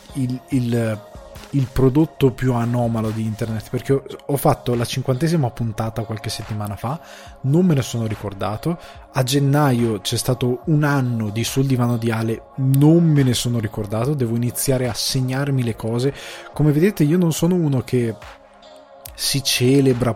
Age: 20-39